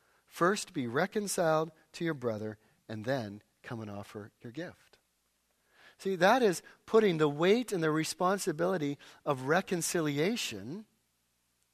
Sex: male